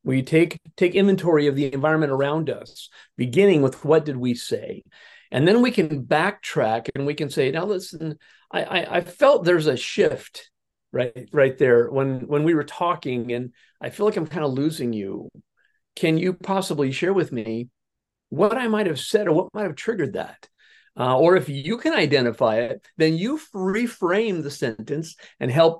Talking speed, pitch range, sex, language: 190 wpm, 125-175 Hz, male, English